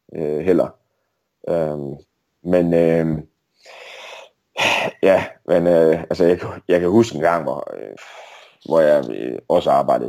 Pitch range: 80-100 Hz